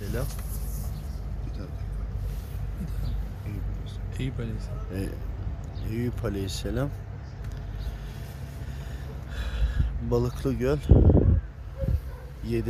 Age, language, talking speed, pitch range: 60-79, Turkish, 45 wpm, 85-120 Hz